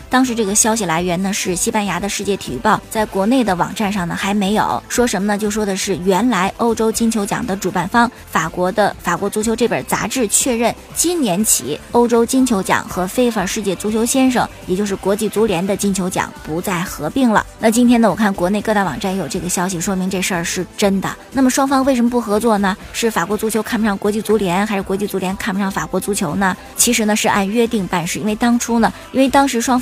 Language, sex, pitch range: Chinese, male, 190-230 Hz